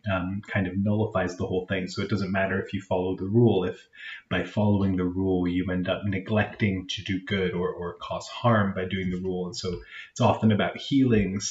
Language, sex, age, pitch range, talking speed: English, male, 30-49, 95-105 Hz, 220 wpm